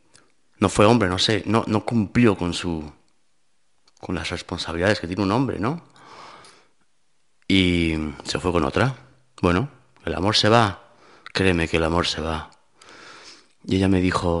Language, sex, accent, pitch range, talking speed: Spanish, male, Spanish, 90-120 Hz, 160 wpm